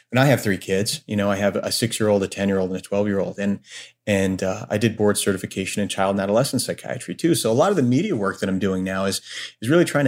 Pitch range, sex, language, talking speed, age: 100-125 Hz, male, English, 260 wpm, 30-49